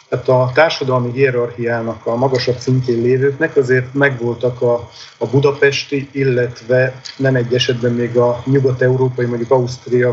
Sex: male